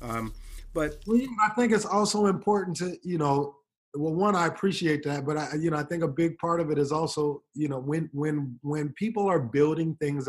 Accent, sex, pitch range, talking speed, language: American, male, 120-150 Hz, 215 wpm, English